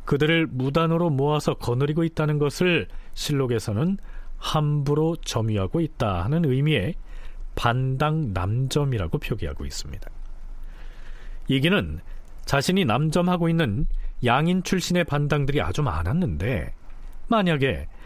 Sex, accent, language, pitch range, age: male, native, Korean, 110-165 Hz, 40-59